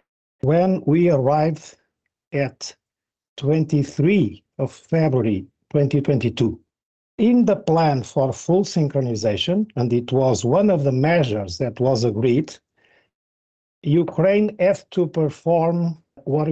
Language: Ukrainian